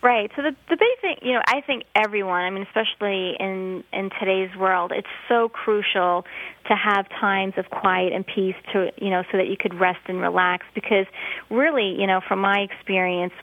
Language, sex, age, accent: English, female, 20-39, American